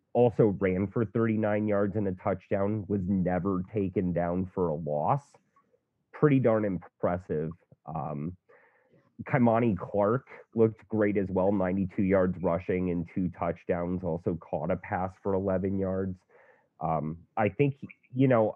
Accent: American